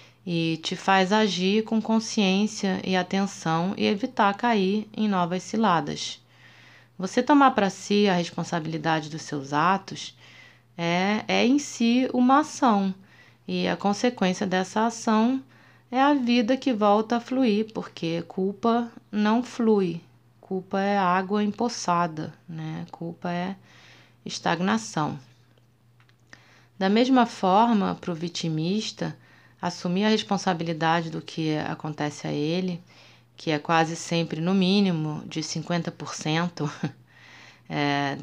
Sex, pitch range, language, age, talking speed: female, 160-210 Hz, Portuguese, 20-39, 120 wpm